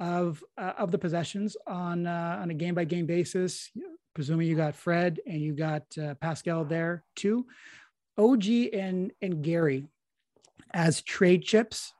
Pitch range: 160-195 Hz